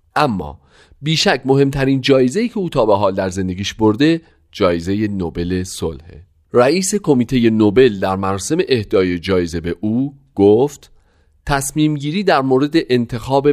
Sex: male